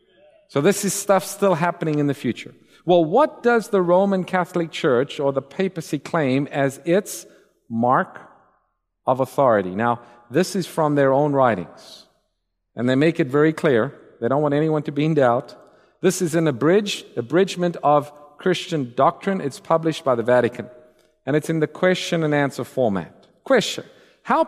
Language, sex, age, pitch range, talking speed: English, male, 50-69, 155-220 Hz, 160 wpm